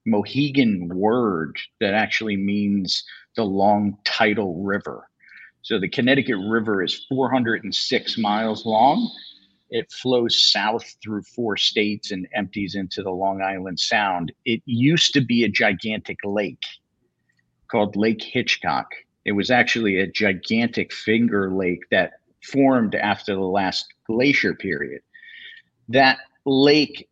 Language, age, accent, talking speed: English, 50-69, American, 125 wpm